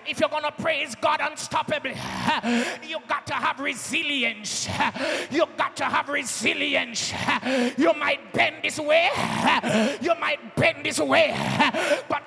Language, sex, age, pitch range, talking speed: English, male, 30-49, 285-310 Hz, 135 wpm